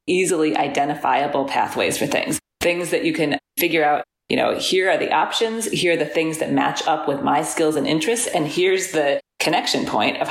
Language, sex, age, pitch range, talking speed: English, female, 30-49, 150-175 Hz, 205 wpm